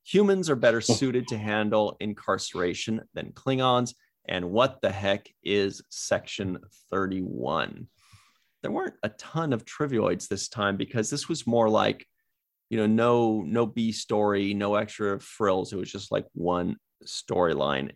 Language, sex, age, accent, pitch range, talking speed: English, male, 30-49, American, 100-130 Hz, 145 wpm